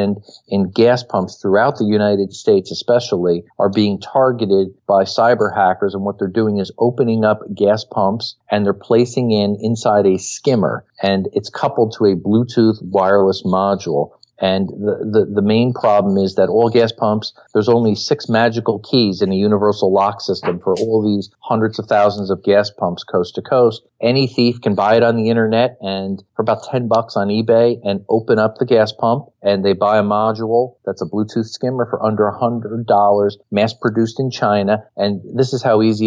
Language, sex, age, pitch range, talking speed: English, male, 50-69, 100-115 Hz, 190 wpm